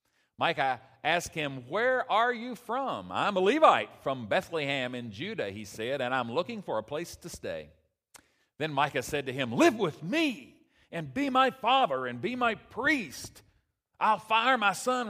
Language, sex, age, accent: English, male, 40-59, American